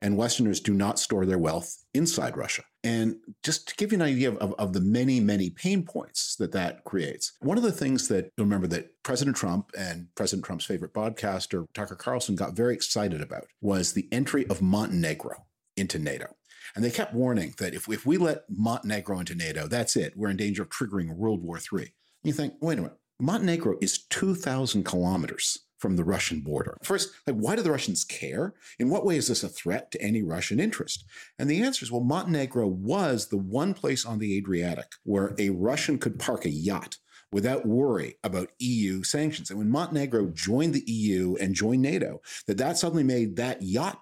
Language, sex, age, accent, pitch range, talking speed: English, male, 50-69, American, 100-140 Hz, 200 wpm